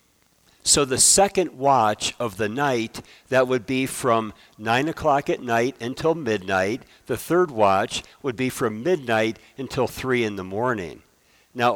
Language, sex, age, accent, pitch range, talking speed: English, male, 60-79, American, 115-150 Hz, 155 wpm